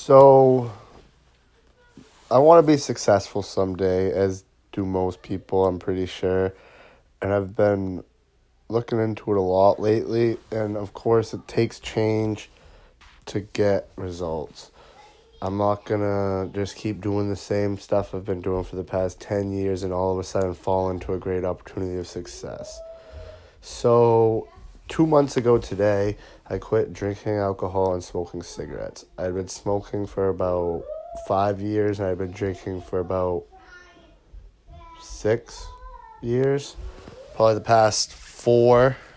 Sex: male